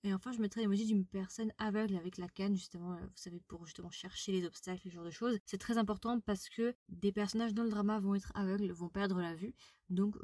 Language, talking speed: French, 240 wpm